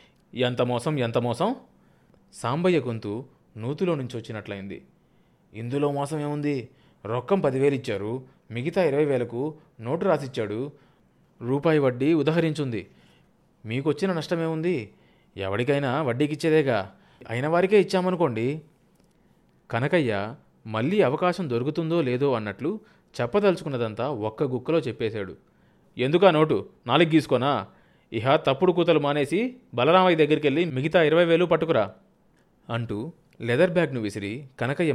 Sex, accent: male, native